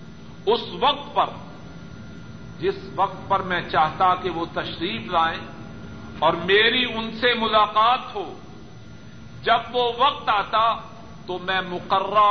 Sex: male